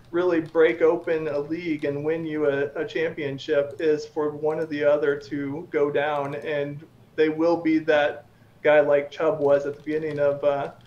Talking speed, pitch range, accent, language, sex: 190 wpm, 145-160 Hz, American, English, male